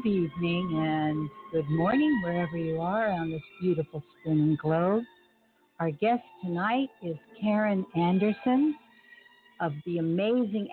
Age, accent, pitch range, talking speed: 60-79, American, 165-220 Hz, 130 wpm